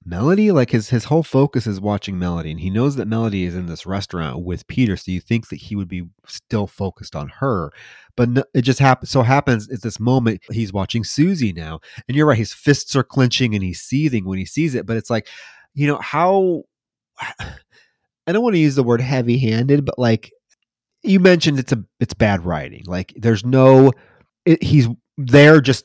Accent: American